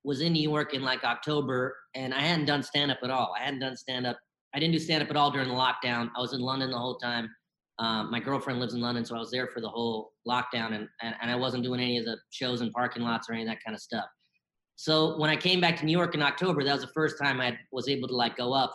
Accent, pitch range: American, 125-155 Hz